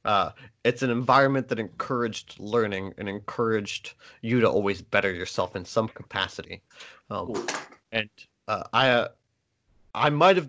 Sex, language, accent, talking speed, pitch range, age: male, English, American, 135 wpm, 100-130 Hz, 30-49